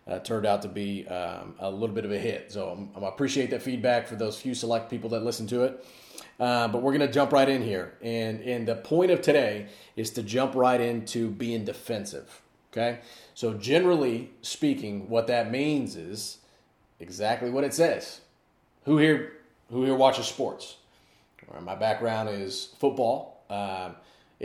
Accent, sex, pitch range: American, male, 105-130 Hz